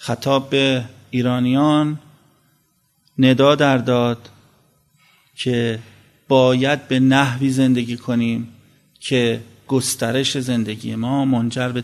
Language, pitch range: Persian, 115-140 Hz